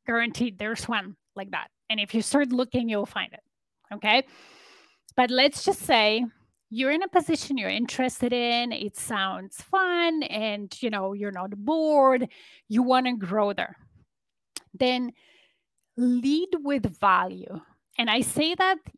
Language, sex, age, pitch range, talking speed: English, female, 30-49, 215-280 Hz, 150 wpm